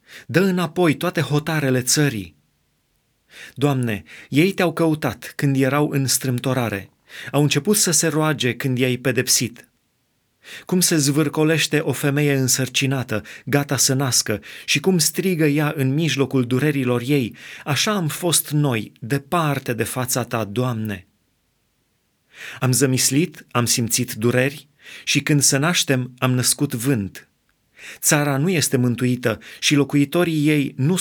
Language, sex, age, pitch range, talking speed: Romanian, male, 30-49, 125-150 Hz, 130 wpm